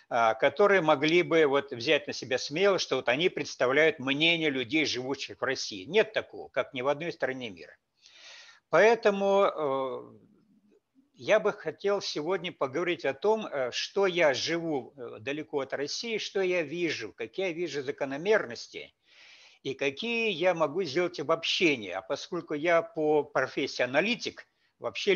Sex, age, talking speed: male, 60-79, 135 wpm